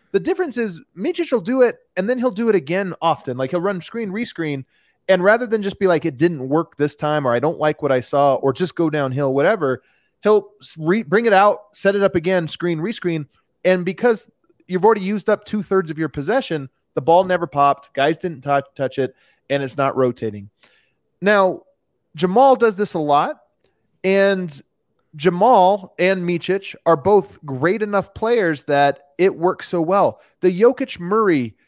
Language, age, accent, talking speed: English, 30-49, American, 190 wpm